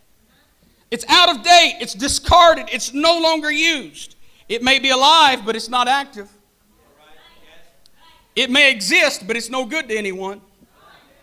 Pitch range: 220-285 Hz